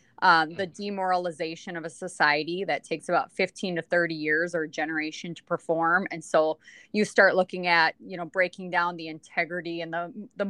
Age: 30-49